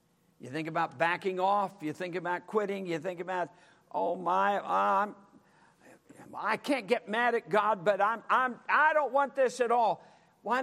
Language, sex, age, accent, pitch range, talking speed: English, male, 60-79, American, 150-195 Hz, 175 wpm